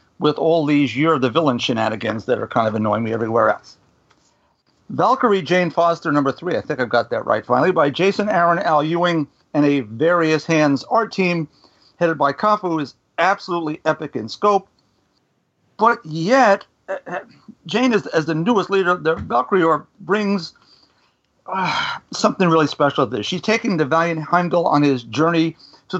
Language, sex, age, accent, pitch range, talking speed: English, male, 50-69, American, 145-185 Hz, 165 wpm